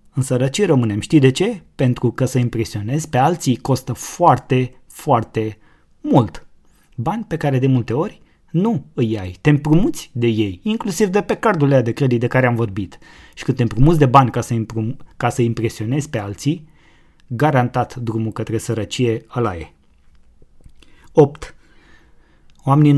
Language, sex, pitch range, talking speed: Romanian, male, 110-135 Hz, 155 wpm